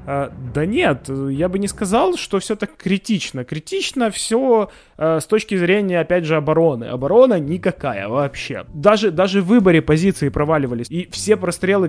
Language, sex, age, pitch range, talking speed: Ukrainian, male, 20-39, 150-195 Hz, 160 wpm